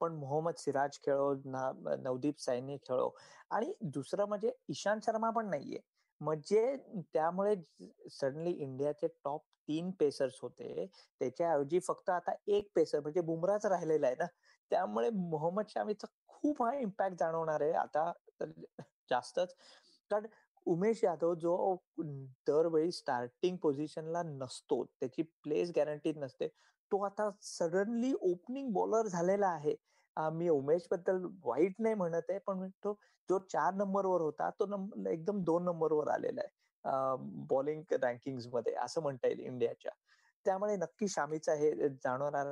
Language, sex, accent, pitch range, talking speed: Marathi, male, native, 155-220 Hz, 135 wpm